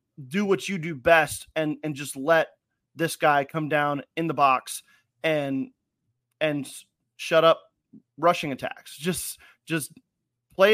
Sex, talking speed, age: male, 140 wpm, 30-49